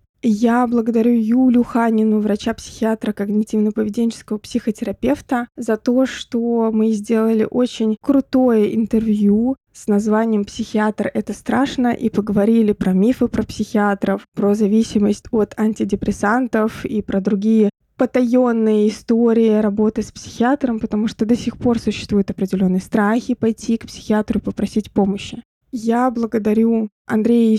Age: 20-39